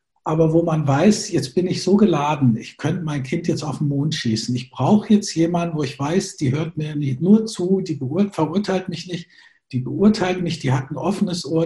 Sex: male